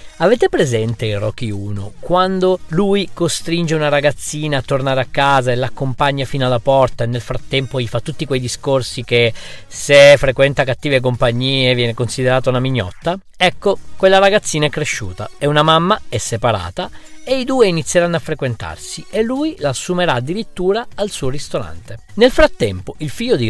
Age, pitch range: 40-59, 115-170 Hz